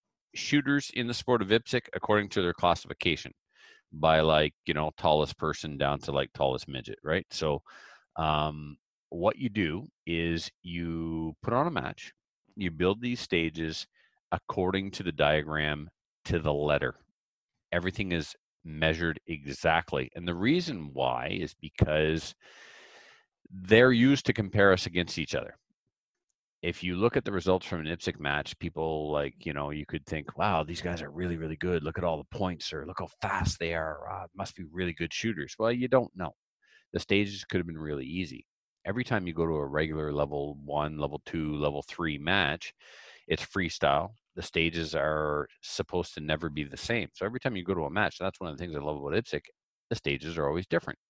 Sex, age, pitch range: male, 40-59, 75-95 Hz